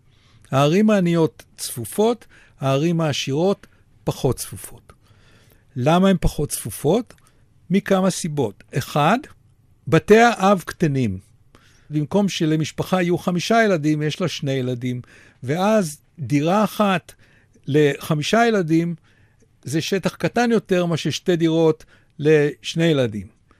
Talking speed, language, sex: 100 wpm, Hebrew, male